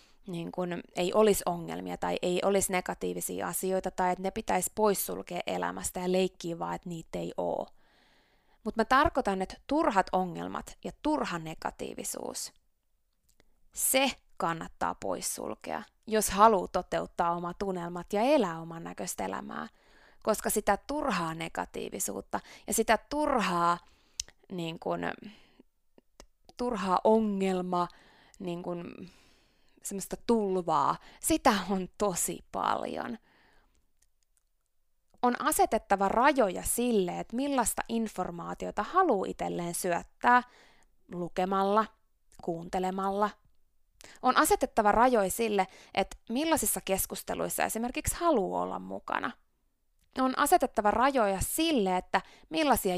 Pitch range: 180-240 Hz